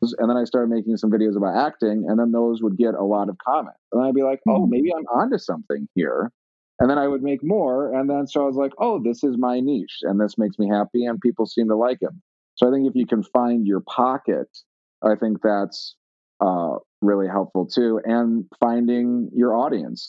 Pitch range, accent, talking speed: 100-125 Hz, American, 225 wpm